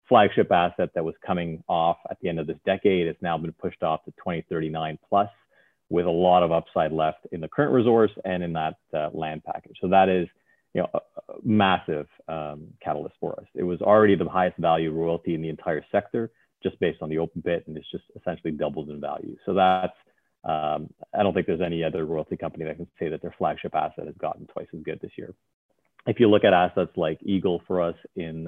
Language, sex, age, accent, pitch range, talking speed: English, male, 30-49, American, 80-95 Hz, 225 wpm